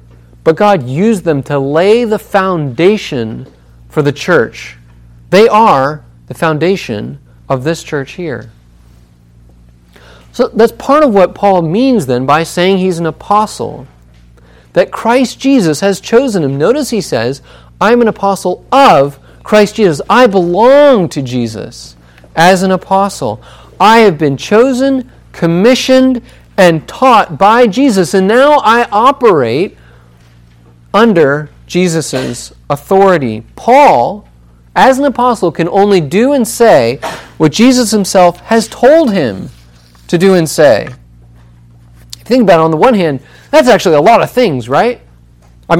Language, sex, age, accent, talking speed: English, male, 40-59, American, 135 wpm